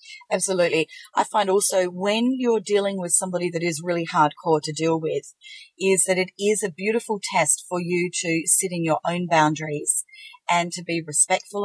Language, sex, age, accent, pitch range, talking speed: English, female, 40-59, Australian, 175-225 Hz, 180 wpm